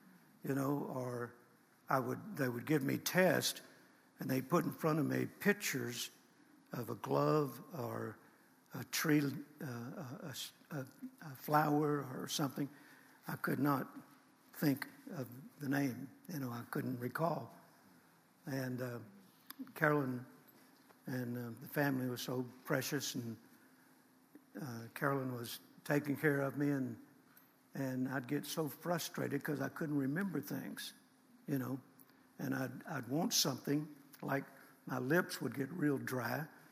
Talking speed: 140 wpm